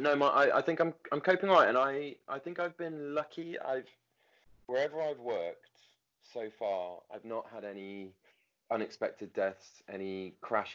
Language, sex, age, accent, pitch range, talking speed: English, male, 20-39, British, 90-105 Hz, 165 wpm